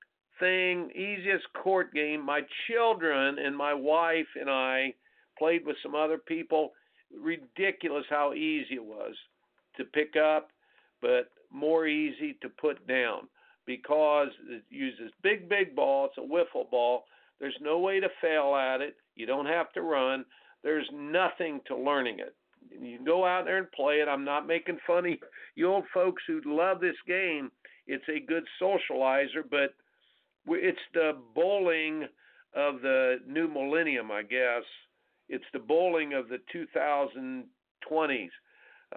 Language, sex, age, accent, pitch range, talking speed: English, male, 50-69, American, 135-185 Hz, 145 wpm